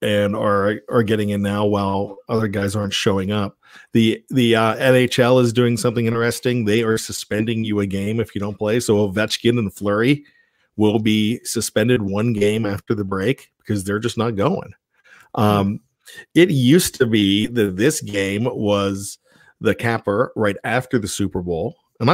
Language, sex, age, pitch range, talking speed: English, male, 40-59, 105-125 Hz, 175 wpm